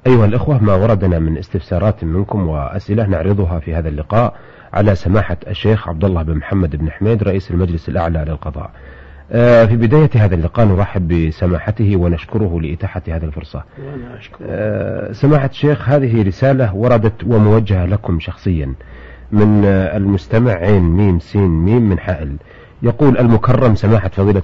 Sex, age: male, 40-59